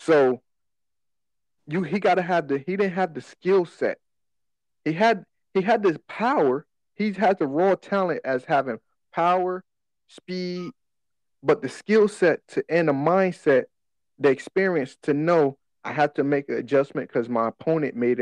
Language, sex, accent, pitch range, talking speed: English, male, American, 135-185 Hz, 160 wpm